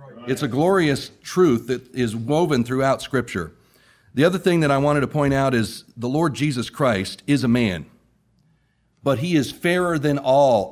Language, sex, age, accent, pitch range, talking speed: English, male, 40-59, American, 110-145 Hz, 180 wpm